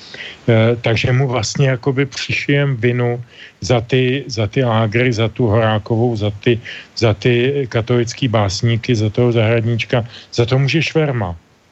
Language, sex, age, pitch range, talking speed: Slovak, male, 40-59, 115-130 Hz, 130 wpm